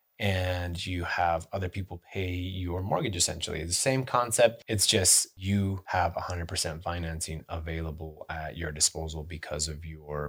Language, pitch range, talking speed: English, 85-110 Hz, 155 wpm